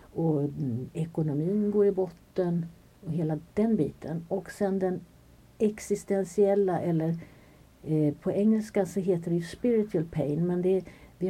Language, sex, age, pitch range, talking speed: Swedish, female, 50-69, 150-195 Hz, 120 wpm